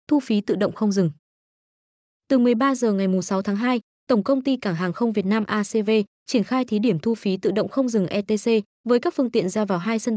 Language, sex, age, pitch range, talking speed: Vietnamese, female, 20-39, 195-245 Hz, 250 wpm